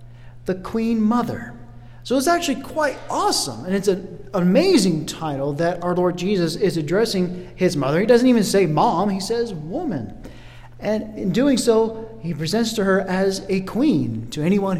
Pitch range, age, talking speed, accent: 145-220 Hz, 40-59, 170 wpm, American